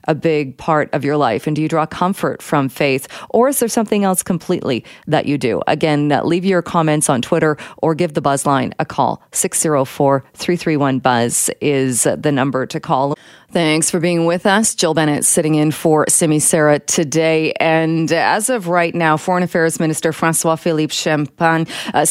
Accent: American